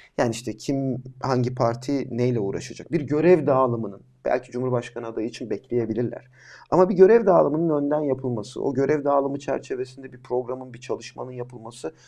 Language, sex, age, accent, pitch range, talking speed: Turkish, male, 40-59, native, 125-170 Hz, 150 wpm